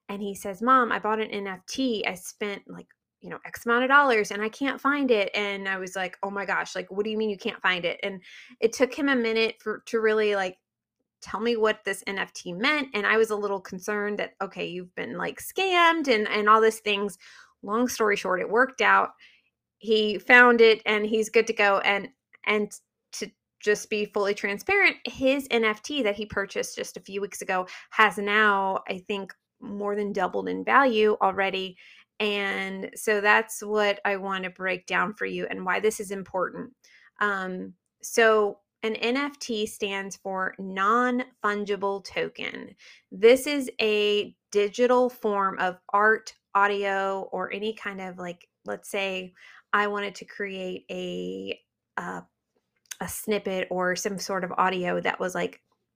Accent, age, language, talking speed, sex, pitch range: American, 20-39, English, 180 wpm, female, 195-225 Hz